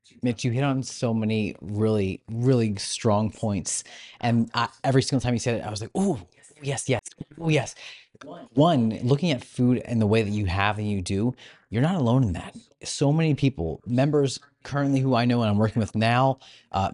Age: 30-49